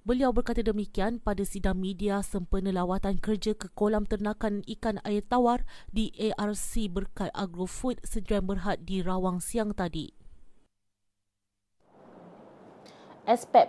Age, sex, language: 30-49, female, Malay